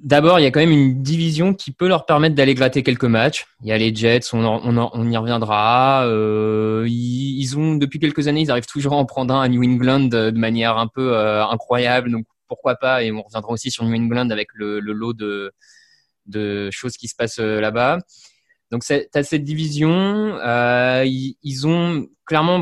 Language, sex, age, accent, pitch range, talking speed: French, male, 20-39, French, 115-145 Hz, 210 wpm